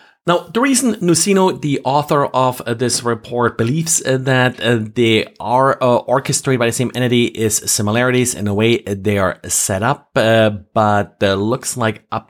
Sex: male